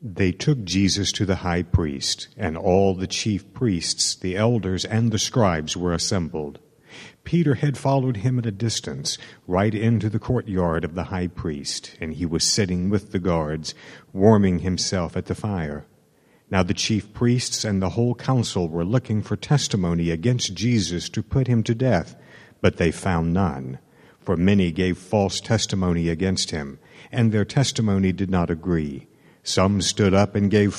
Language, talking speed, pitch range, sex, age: English, 170 wpm, 90-115 Hz, male, 60-79